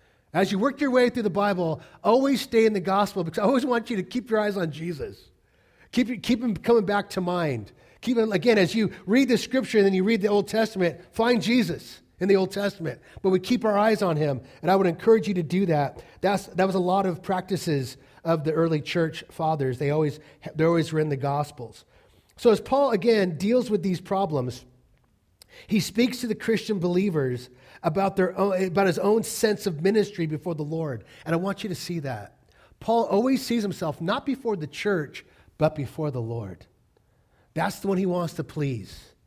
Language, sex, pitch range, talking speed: English, male, 155-215 Hz, 210 wpm